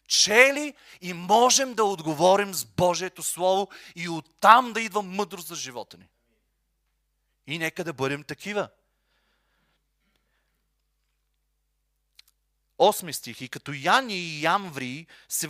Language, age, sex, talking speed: Bulgarian, 30-49, male, 110 wpm